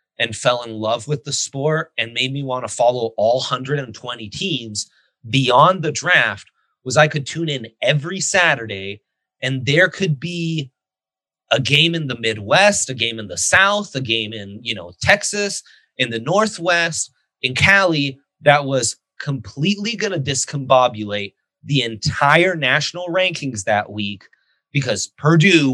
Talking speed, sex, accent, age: 145 wpm, male, American, 30-49